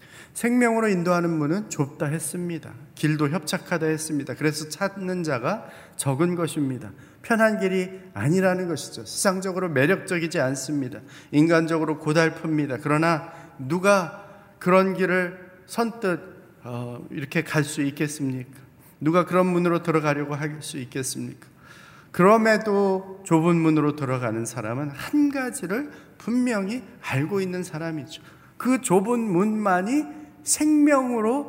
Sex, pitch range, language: male, 155-195 Hz, Korean